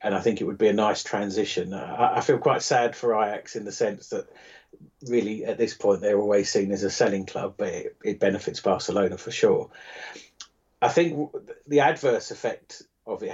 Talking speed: 195 wpm